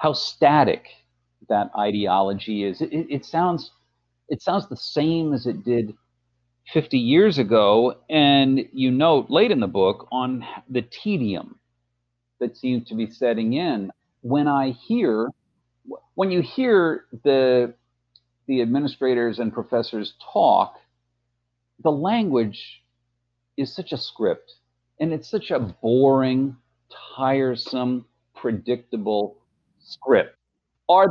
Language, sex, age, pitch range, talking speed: English, male, 50-69, 115-165 Hz, 120 wpm